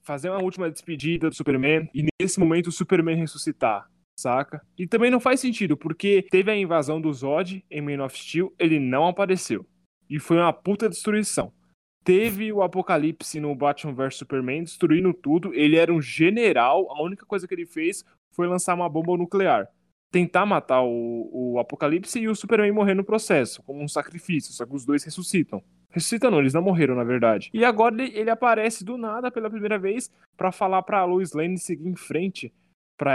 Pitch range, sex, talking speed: 145-190 Hz, male, 190 wpm